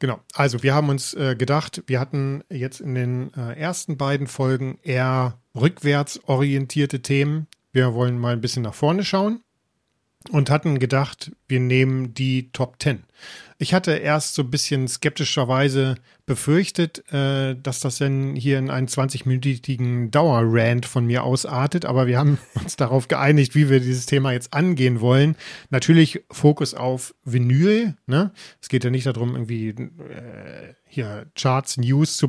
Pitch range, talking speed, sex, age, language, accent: 125-150 Hz, 155 wpm, male, 40-59, German, German